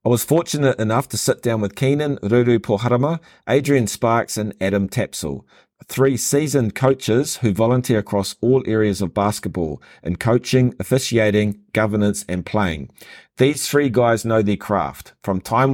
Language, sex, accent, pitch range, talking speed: English, male, Australian, 105-130 Hz, 155 wpm